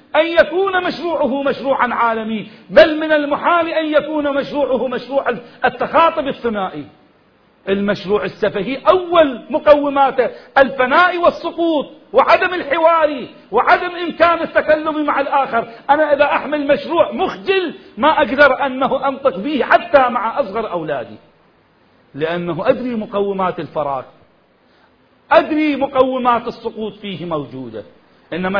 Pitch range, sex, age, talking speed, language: 225-305 Hz, male, 40-59, 105 wpm, Arabic